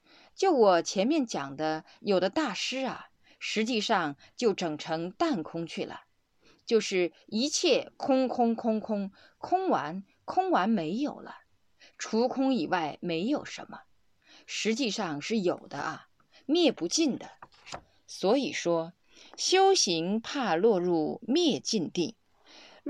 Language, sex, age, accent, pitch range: Chinese, female, 20-39, native, 185-300 Hz